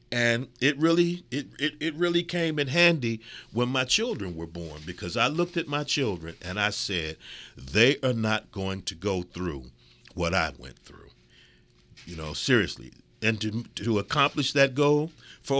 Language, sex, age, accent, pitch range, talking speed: English, male, 50-69, American, 90-135 Hz, 175 wpm